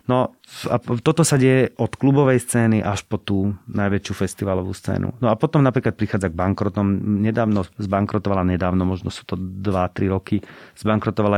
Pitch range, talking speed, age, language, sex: 95-110 Hz, 160 wpm, 40-59, Slovak, male